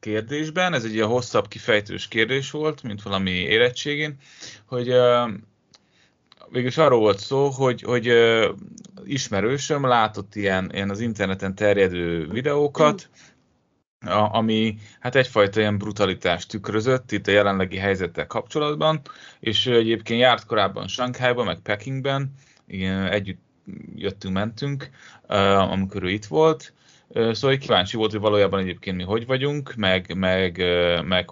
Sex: male